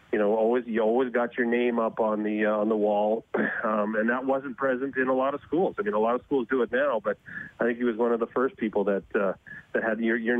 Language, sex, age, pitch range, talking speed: English, male, 40-59, 105-125 Hz, 290 wpm